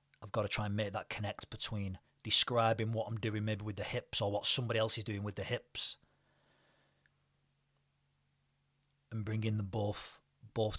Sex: male